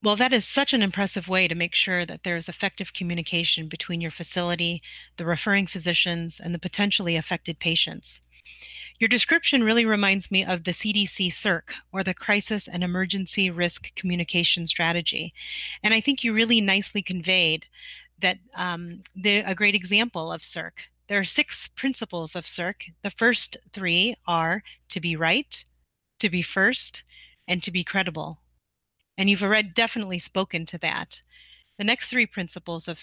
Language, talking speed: English, 165 wpm